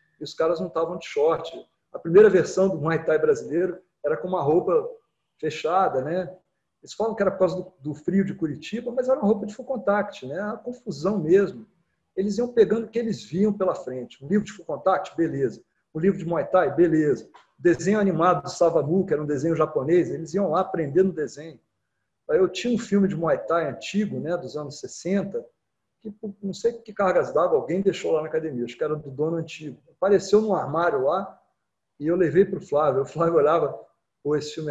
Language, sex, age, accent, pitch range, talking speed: Portuguese, male, 40-59, Brazilian, 160-205 Hz, 215 wpm